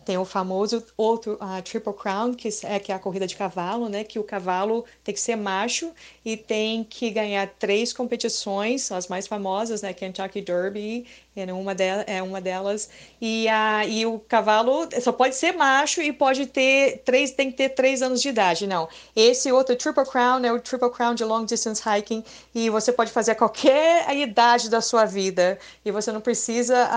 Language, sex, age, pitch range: Portuguese, female, 30-49, 195-235 Hz